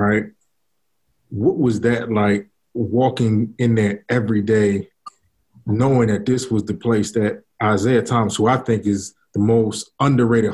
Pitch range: 105-125 Hz